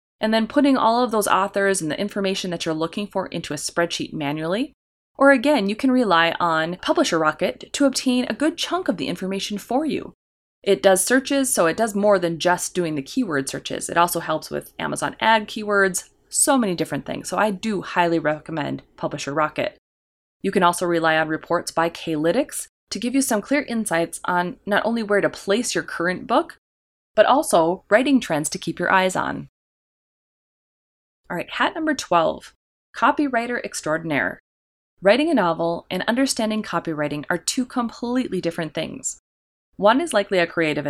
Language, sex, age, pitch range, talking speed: English, female, 30-49, 160-235 Hz, 180 wpm